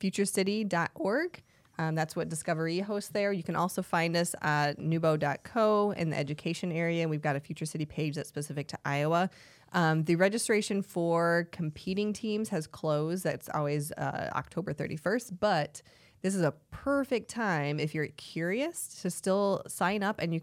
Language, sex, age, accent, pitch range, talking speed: English, female, 20-39, American, 155-190 Hz, 165 wpm